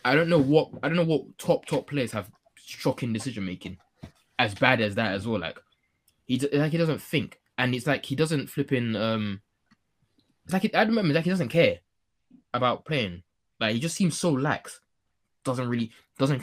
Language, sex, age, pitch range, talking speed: English, male, 20-39, 95-130 Hz, 205 wpm